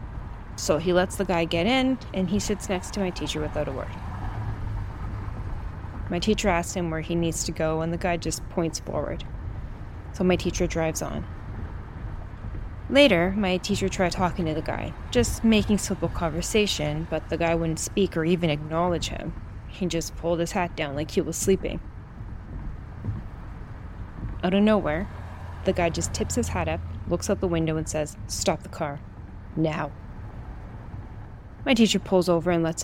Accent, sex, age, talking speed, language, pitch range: American, female, 20-39, 170 wpm, English, 110-175 Hz